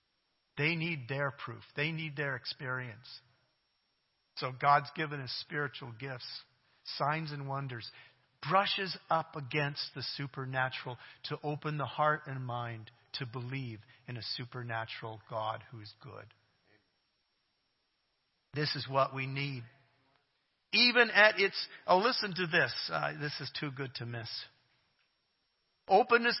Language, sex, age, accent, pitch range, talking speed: English, male, 50-69, American, 135-210 Hz, 130 wpm